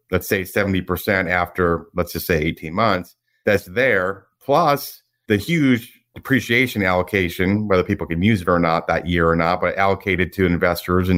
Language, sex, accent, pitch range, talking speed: English, male, American, 90-125 Hz, 170 wpm